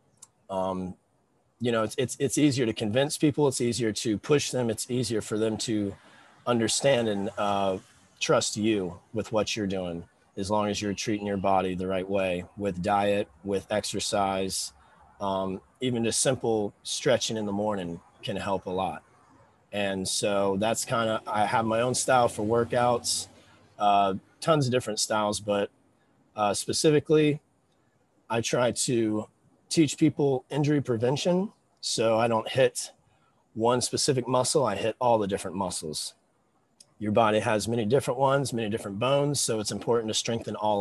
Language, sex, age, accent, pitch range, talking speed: English, male, 30-49, American, 100-125 Hz, 160 wpm